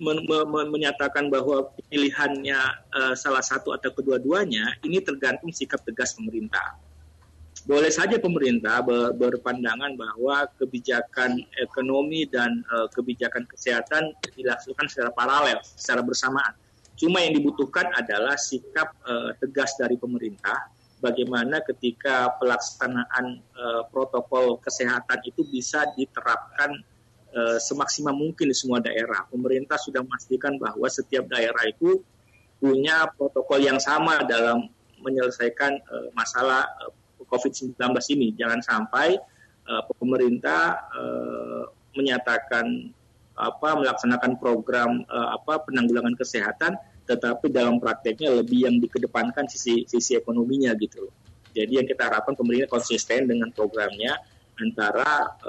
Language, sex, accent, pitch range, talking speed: Indonesian, male, native, 120-140 Hz, 110 wpm